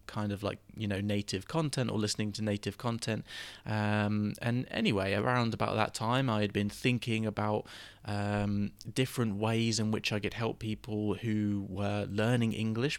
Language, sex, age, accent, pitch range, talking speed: English, male, 20-39, British, 105-120 Hz, 170 wpm